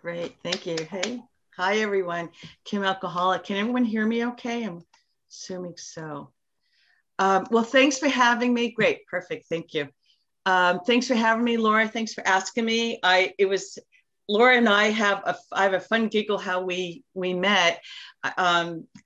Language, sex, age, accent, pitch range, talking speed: English, female, 50-69, American, 175-225 Hz, 170 wpm